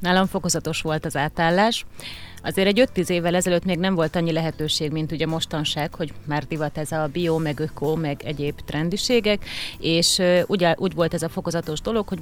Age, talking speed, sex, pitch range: 30-49, 185 wpm, female, 165-190 Hz